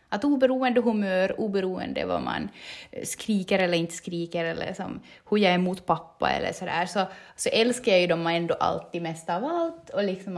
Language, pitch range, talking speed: Swedish, 175-235 Hz, 180 wpm